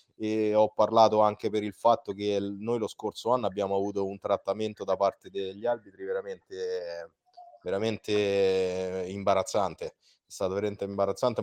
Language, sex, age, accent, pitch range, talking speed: Italian, male, 20-39, native, 105-135 Hz, 140 wpm